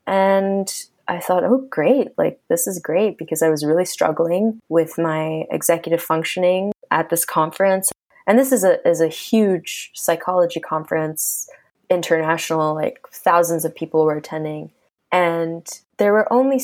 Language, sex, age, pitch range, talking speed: English, female, 20-39, 160-220 Hz, 150 wpm